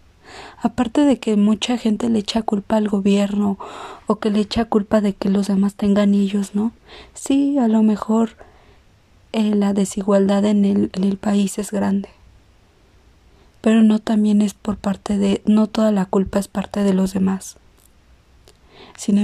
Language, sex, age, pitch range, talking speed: Spanish, female, 20-39, 195-215 Hz, 160 wpm